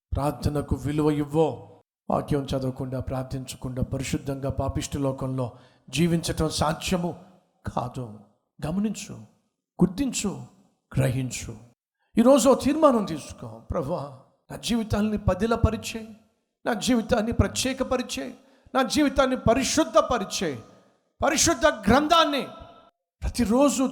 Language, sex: Telugu, male